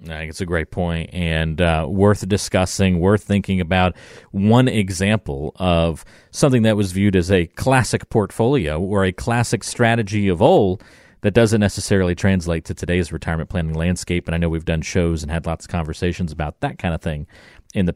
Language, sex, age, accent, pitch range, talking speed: English, male, 40-59, American, 90-115 Hz, 190 wpm